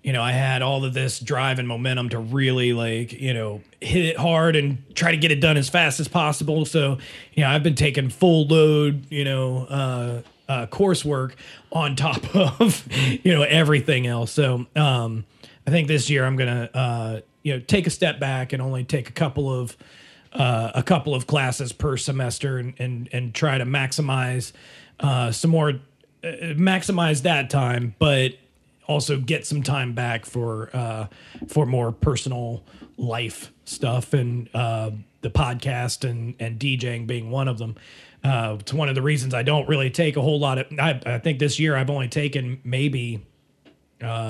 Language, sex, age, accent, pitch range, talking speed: English, male, 30-49, American, 120-145 Hz, 185 wpm